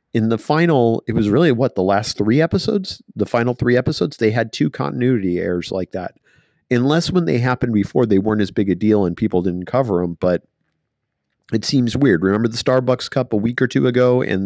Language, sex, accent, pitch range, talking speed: English, male, American, 95-125 Hz, 215 wpm